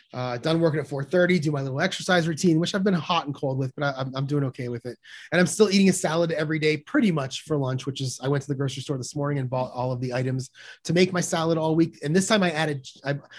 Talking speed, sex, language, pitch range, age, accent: 290 wpm, male, English, 125-170 Hz, 30-49, American